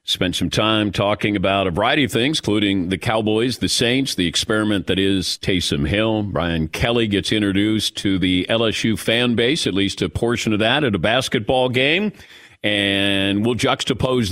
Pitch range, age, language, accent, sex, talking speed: 95-125 Hz, 50-69, English, American, male, 175 wpm